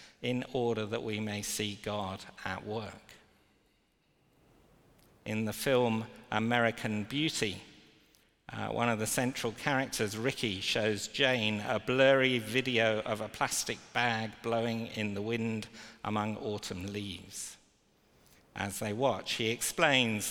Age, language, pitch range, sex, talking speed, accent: 50-69, English, 105-125 Hz, male, 125 wpm, British